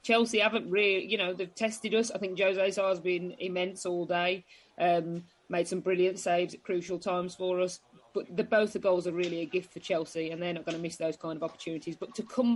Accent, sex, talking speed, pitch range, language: British, female, 245 wpm, 180-205 Hz, English